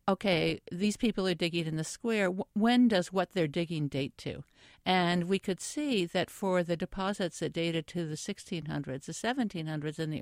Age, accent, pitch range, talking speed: 60-79, American, 150-195 Hz, 190 wpm